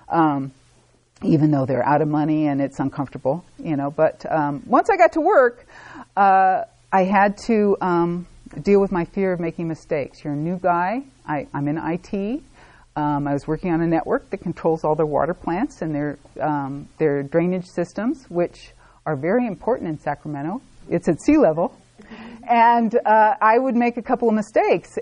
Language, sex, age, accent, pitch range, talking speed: English, female, 40-59, American, 160-220 Hz, 185 wpm